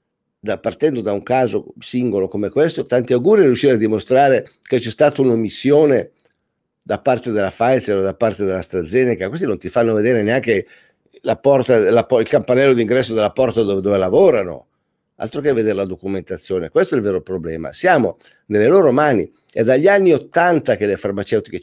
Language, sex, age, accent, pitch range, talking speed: Italian, male, 50-69, native, 105-135 Hz, 180 wpm